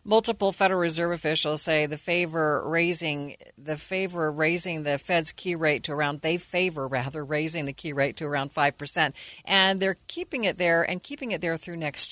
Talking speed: 195 wpm